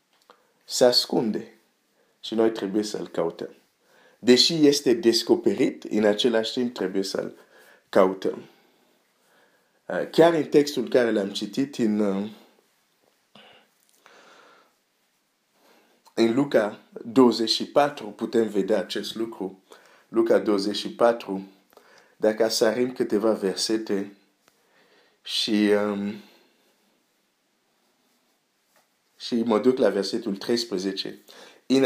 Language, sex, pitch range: Romanian, male, 105-135 Hz